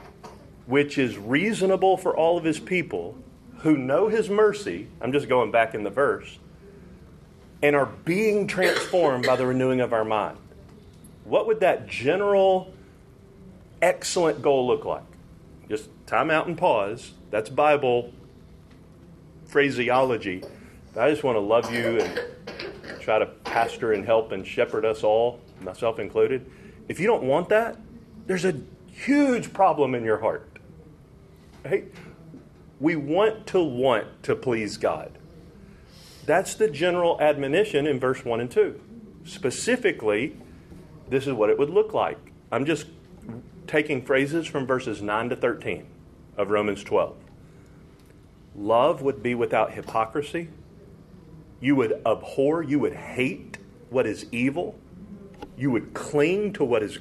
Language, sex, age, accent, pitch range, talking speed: English, male, 40-59, American, 125-190 Hz, 140 wpm